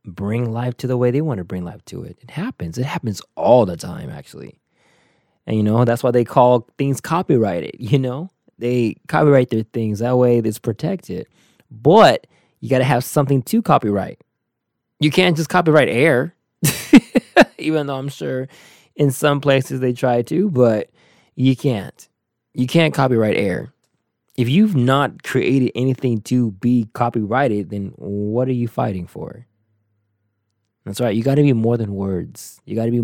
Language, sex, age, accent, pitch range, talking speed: English, male, 20-39, American, 115-145 Hz, 175 wpm